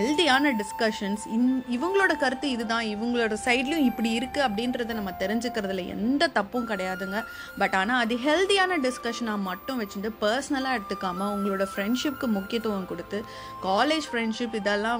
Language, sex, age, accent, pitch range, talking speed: Tamil, female, 30-49, native, 200-260 Hz, 130 wpm